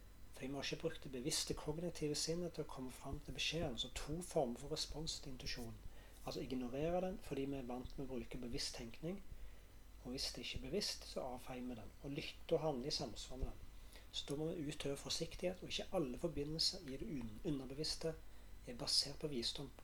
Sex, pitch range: male, 125-155 Hz